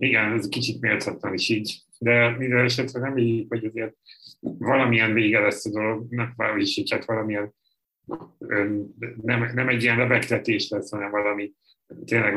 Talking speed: 135 wpm